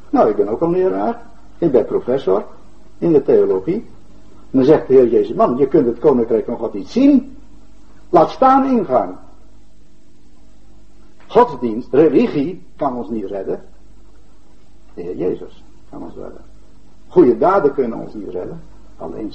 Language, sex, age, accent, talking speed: Dutch, male, 60-79, Dutch, 155 wpm